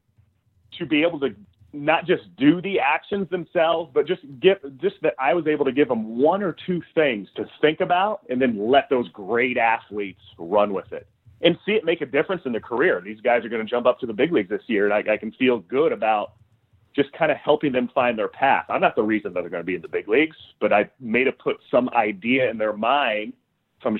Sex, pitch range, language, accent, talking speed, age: male, 110-160 Hz, English, American, 245 wpm, 30-49